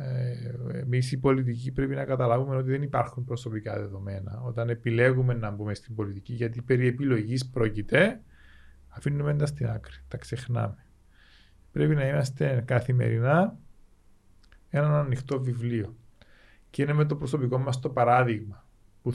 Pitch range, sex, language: 115-135 Hz, male, Greek